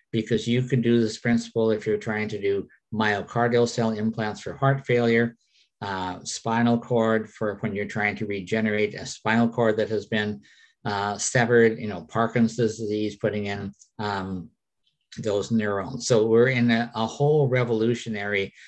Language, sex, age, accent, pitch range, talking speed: English, male, 50-69, American, 105-125 Hz, 160 wpm